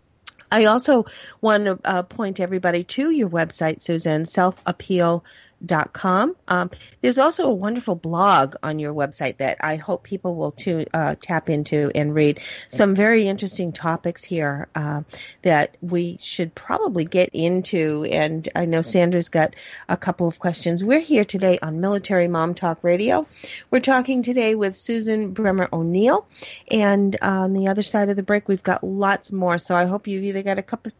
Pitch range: 160-210 Hz